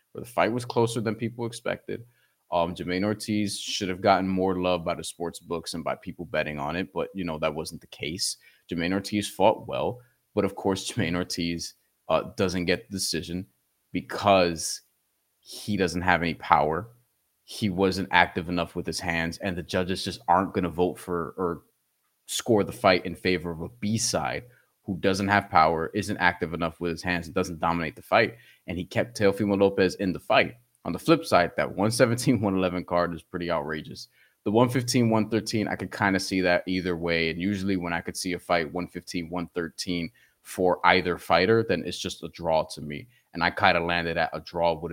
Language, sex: English, male